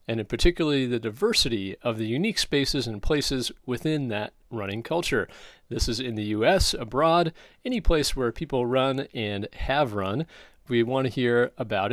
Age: 40-59